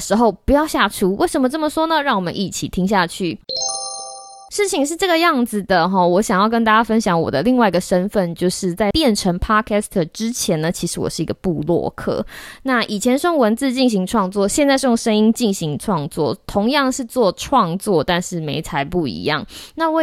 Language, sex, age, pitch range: Chinese, female, 20-39, 175-250 Hz